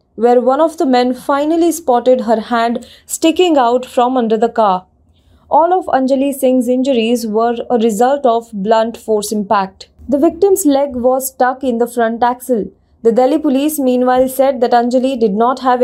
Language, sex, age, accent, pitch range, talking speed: English, female, 20-39, Indian, 235-280 Hz, 175 wpm